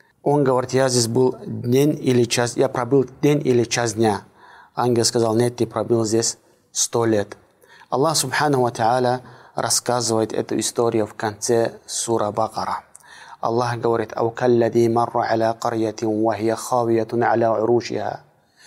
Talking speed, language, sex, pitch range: 120 wpm, Russian, male, 115-130 Hz